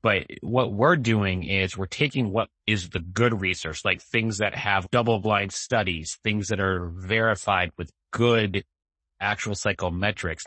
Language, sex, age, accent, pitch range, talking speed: English, male, 30-49, American, 90-115 Hz, 155 wpm